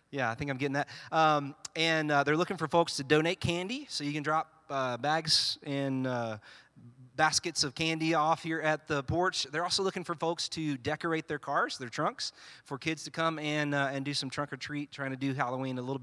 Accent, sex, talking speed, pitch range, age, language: American, male, 230 wpm, 135-165 Hz, 30-49, English